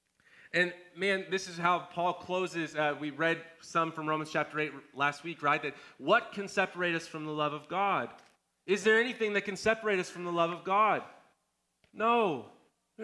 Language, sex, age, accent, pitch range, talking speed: English, male, 30-49, American, 145-180 Hz, 195 wpm